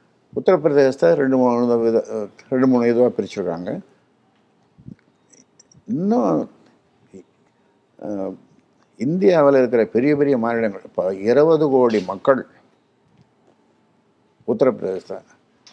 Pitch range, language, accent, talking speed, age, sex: 125-185 Hz, Tamil, native, 75 wpm, 60-79, male